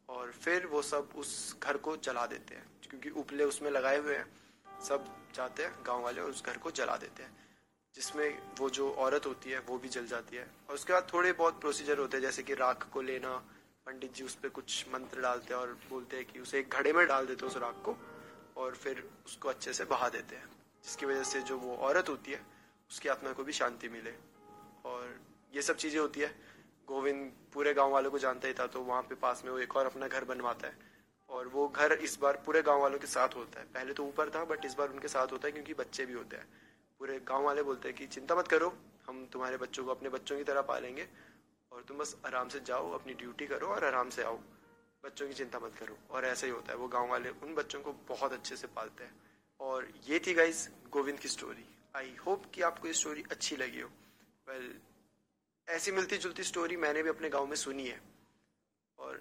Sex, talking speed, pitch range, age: male, 235 wpm, 130-150 Hz, 20-39